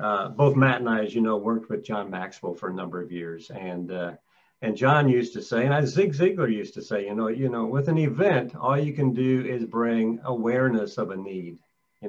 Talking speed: 235 wpm